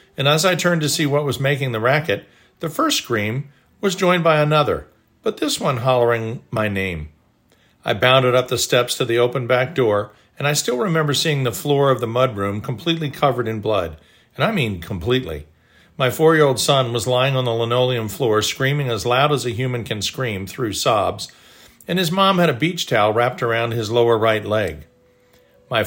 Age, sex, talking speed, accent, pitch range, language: 50-69, male, 195 wpm, American, 110-145 Hz, English